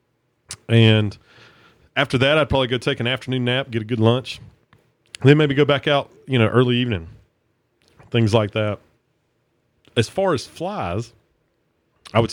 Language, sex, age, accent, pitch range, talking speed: English, male, 30-49, American, 95-115 Hz, 160 wpm